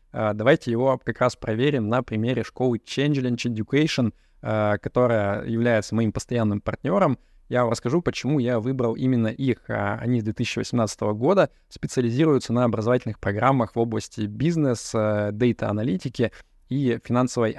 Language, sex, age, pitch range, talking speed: Russian, male, 20-39, 110-130 Hz, 130 wpm